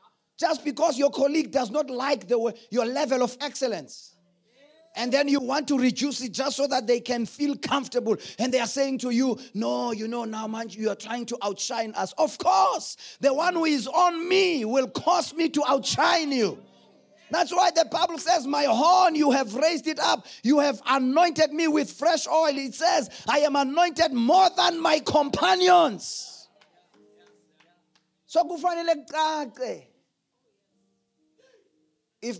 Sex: male